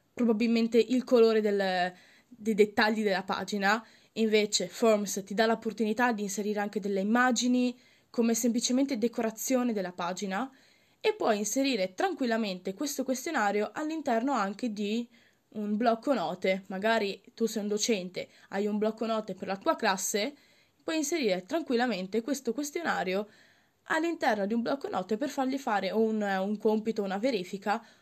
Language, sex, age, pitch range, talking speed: Italian, female, 20-39, 205-250 Hz, 140 wpm